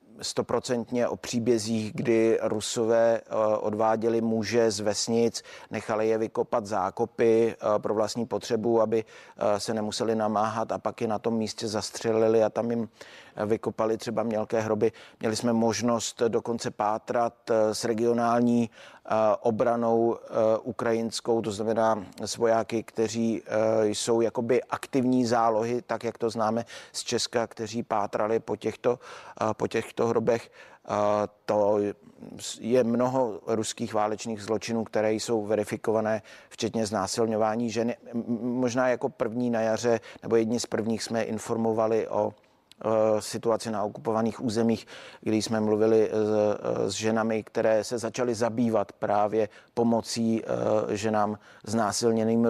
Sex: male